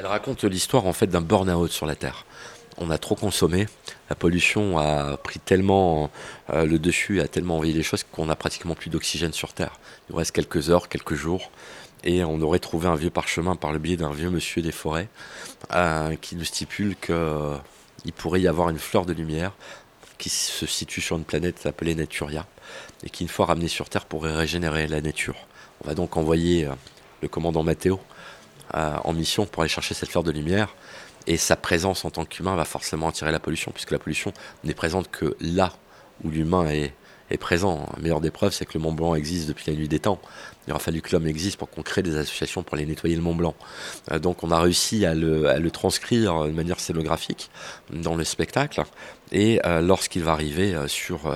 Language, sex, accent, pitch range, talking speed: French, male, French, 80-90 Hz, 205 wpm